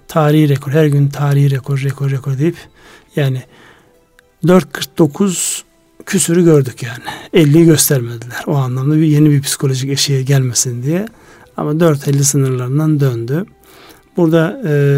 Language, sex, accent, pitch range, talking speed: Turkish, male, native, 135-160 Hz, 125 wpm